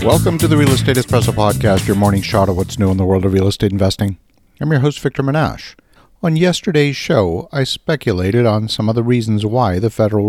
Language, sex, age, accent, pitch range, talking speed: English, male, 50-69, American, 100-125 Hz, 220 wpm